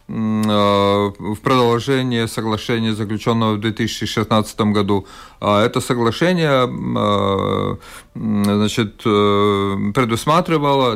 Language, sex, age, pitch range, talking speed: Russian, male, 40-59, 110-140 Hz, 60 wpm